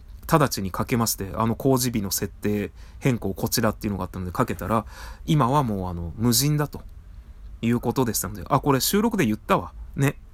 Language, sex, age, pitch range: Japanese, male, 20-39, 85-135 Hz